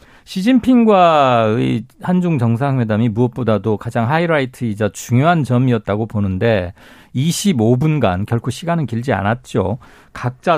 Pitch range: 120-180 Hz